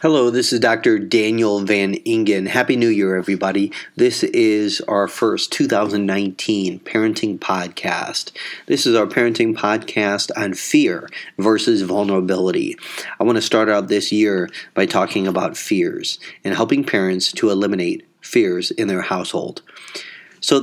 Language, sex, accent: English, male, American